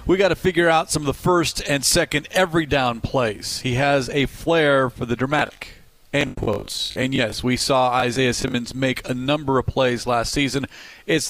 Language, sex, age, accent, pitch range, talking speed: English, male, 40-59, American, 120-145 Hz, 195 wpm